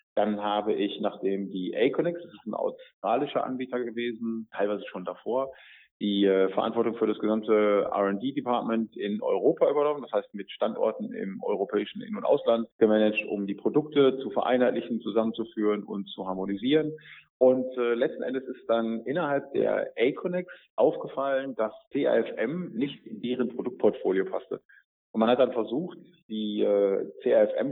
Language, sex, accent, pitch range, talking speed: German, male, German, 110-145 Hz, 145 wpm